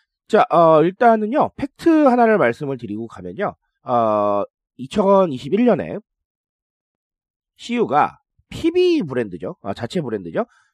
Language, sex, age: Korean, male, 30-49